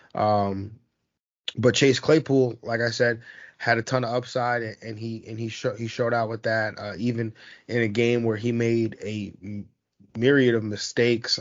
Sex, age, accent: male, 20-39, American